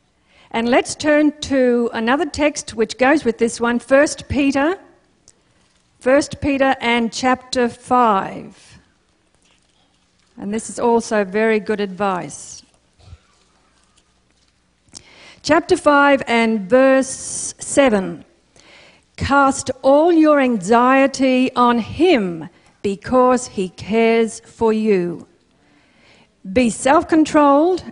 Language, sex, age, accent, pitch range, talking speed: English, female, 50-69, Australian, 225-285 Hz, 90 wpm